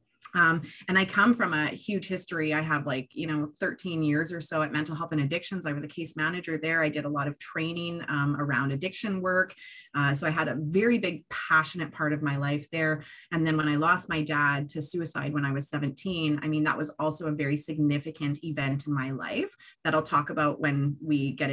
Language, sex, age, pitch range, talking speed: English, female, 30-49, 150-185 Hz, 230 wpm